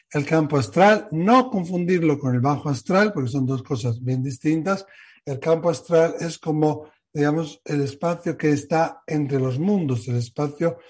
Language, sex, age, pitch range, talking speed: Spanish, male, 60-79, 135-170 Hz, 165 wpm